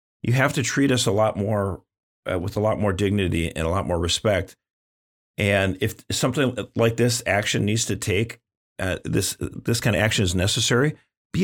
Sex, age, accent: male, 40-59, American